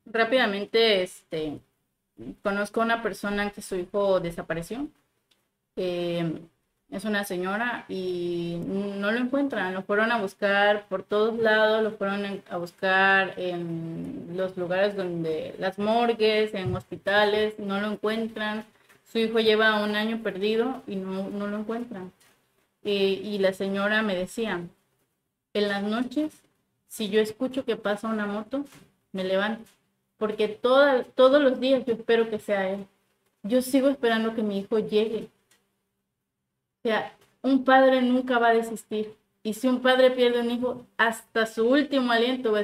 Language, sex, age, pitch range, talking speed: Spanish, female, 30-49, 195-230 Hz, 150 wpm